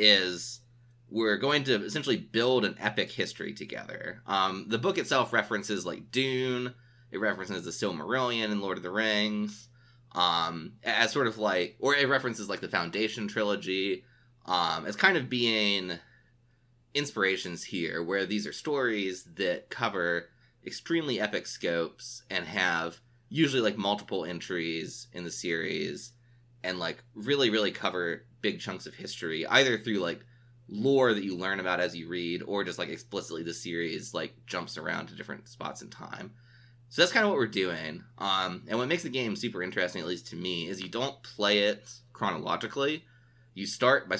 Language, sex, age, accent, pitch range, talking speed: English, male, 20-39, American, 95-120 Hz, 170 wpm